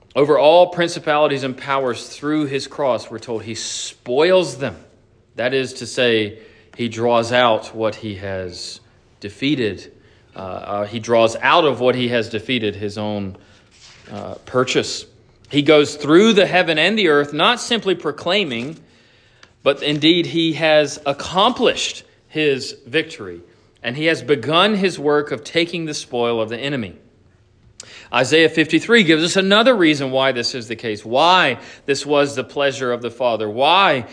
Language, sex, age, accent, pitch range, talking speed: English, male, 40-59, American, 110-150 Hz, 155 wpm